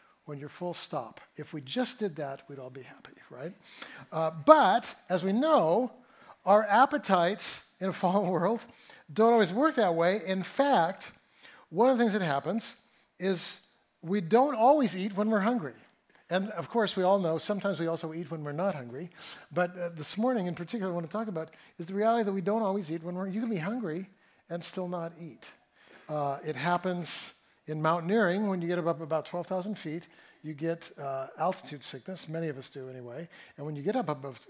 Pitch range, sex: 155-210 Hz, male